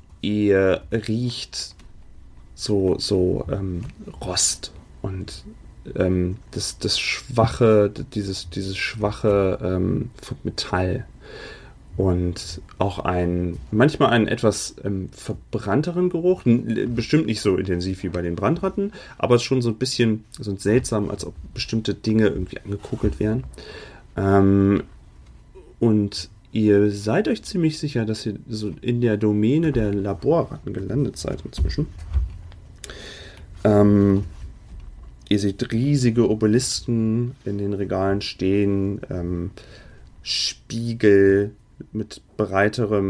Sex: male